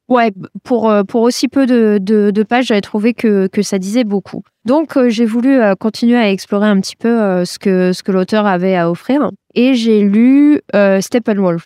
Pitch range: 185-235 Hz